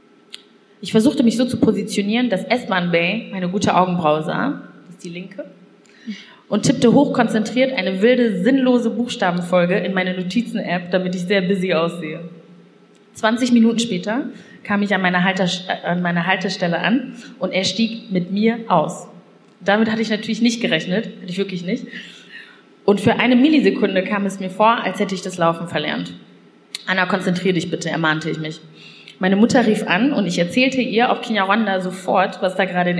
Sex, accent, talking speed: female, German, 170 wpm